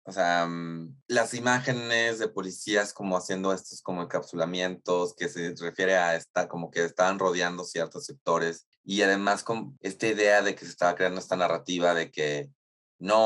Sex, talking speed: male, 170 wpm